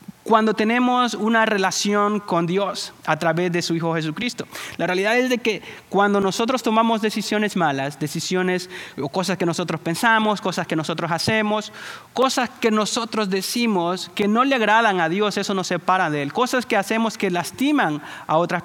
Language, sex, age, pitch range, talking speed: English, male, 30-49, 155-215 Hz, 175 wpm